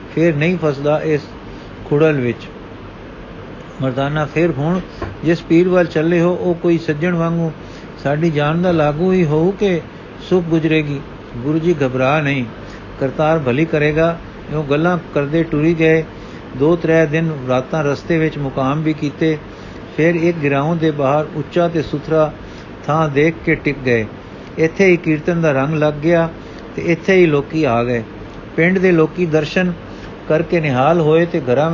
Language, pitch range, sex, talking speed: Punjabi, 140-170 Hz, male, 155 wpm